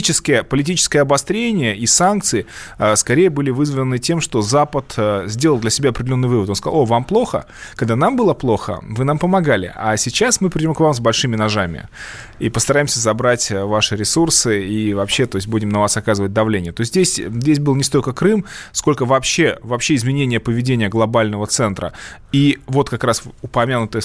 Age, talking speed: 20-39, 175 wpm